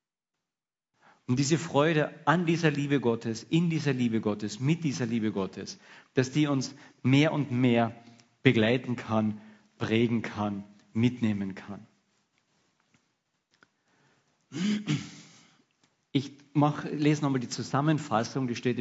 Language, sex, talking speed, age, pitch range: German, male, 110 wpm, 50-69, 115-155 Hz